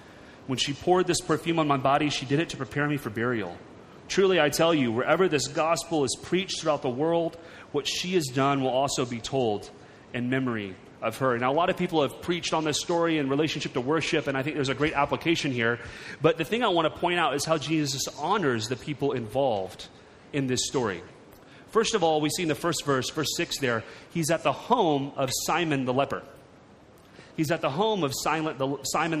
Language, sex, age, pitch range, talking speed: English, male, 30-49, 135-165 Hz, 220 wpm